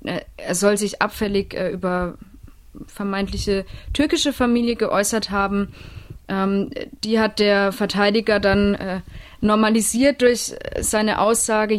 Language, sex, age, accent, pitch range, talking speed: German, female, 20-39, German, 185-220 Hz, 110 wpm